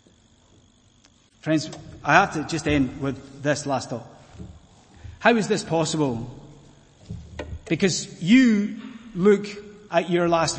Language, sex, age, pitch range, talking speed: English, male, 30-49, 130-180 Hz, 115 wpm